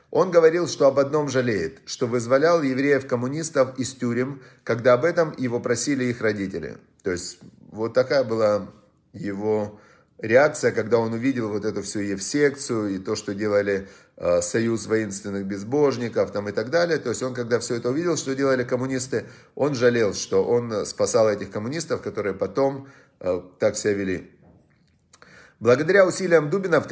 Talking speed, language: 155 wpm, Russian